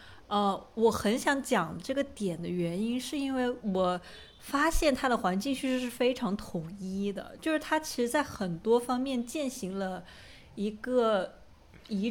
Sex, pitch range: female, 190-250 Hz